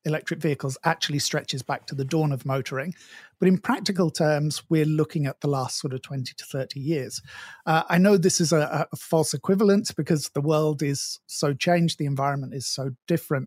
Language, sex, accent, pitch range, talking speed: English, male, British, 145-175 Hz, 200 wpm